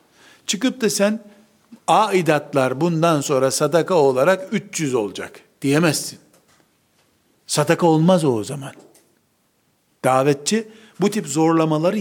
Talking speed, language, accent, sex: 100 wpm, Turkish, native, male